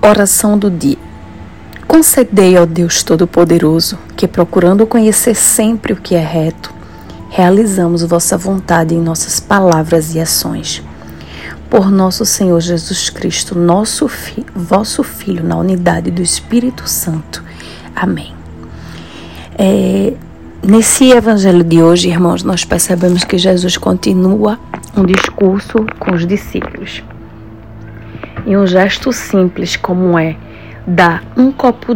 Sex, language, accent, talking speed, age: female, Portuguese, Brazilian, 115 wpm, 40-59